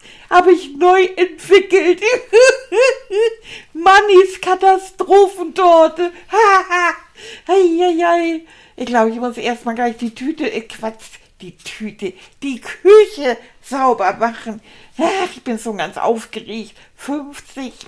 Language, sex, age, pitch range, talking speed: German, female, 60-79, 230-320 Hz, 100 wpm